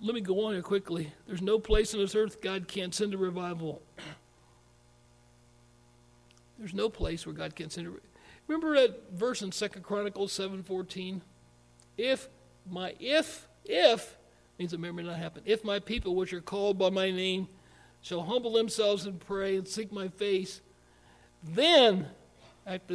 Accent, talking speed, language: American, 160 wpm, English